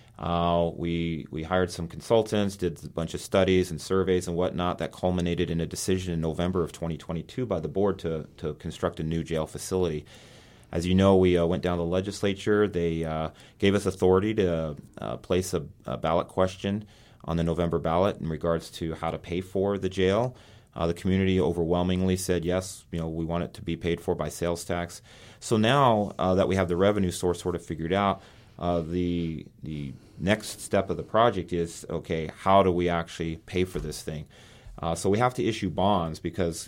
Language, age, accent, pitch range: English, 30-49, American, 85-95 Hz